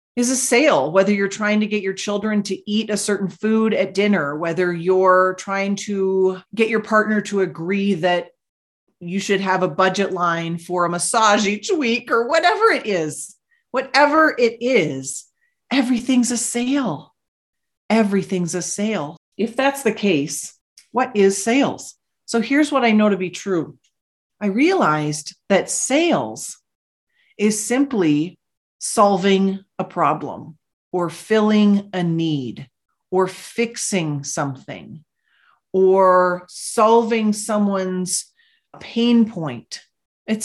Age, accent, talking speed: 40-59, American, 130 wpm